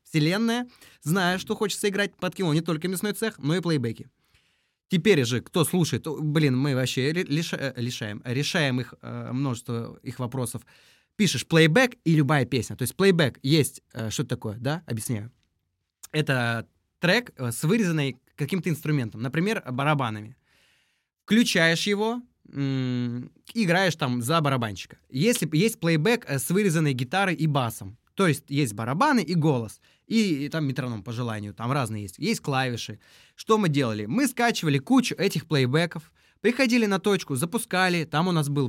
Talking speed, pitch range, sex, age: 145 wpm, 130-185 Hz, male, 20-39